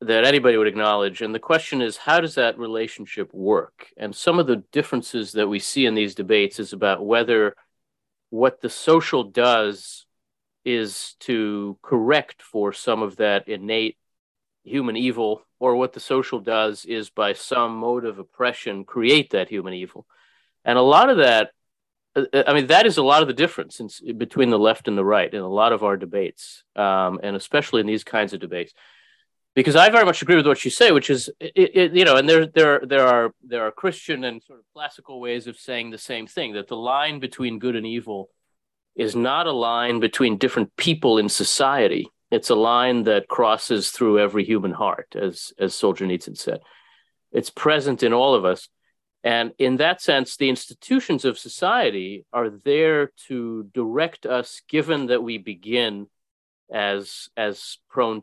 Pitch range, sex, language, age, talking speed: 105-135 Hz, male, English, 40-59, 185 wpm